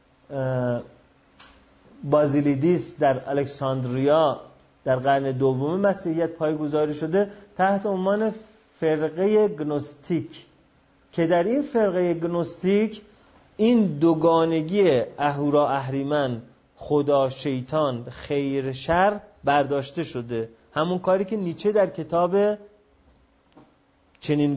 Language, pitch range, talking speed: Persian, 130-175 Hz, 85 wpm